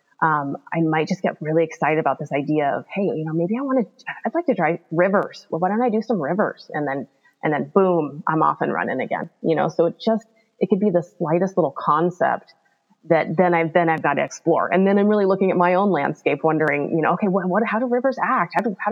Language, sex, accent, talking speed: English, female, American, 260 wpm